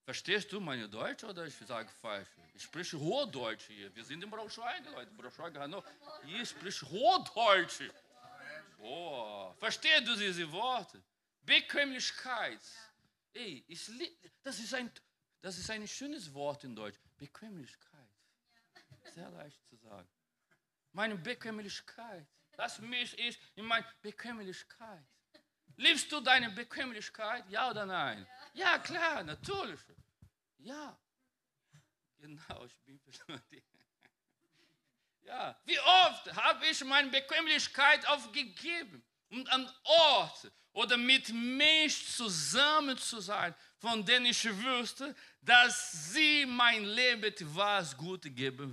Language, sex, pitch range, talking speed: German, male, 175-275 Hz, 115 wpm